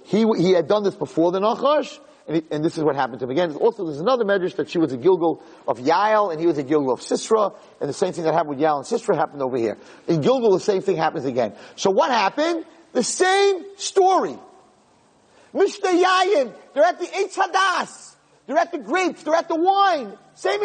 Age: 40-59